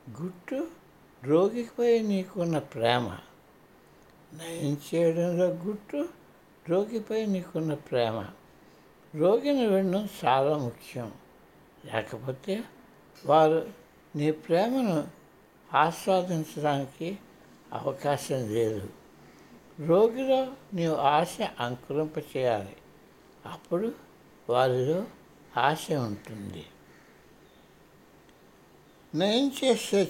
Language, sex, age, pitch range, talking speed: Telugu, male, 60-79, 130-190 Hz, 60 wpm